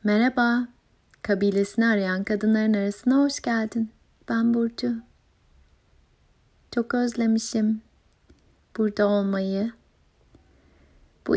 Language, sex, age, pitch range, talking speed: Turkish, female, 30-49, 200-230 Hz, 75 wpm